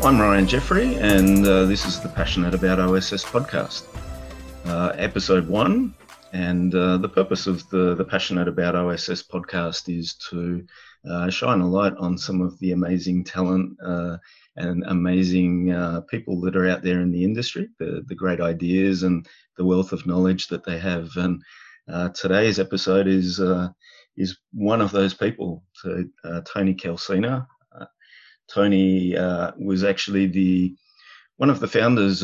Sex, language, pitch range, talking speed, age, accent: male, English, 90-95 Hz, 160 wpm, 30-49, Australian